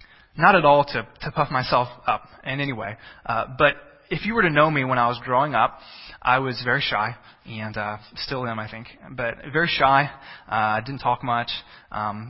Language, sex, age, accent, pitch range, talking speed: English, male, 20-39, American, 120-155 Hz, 205 wpm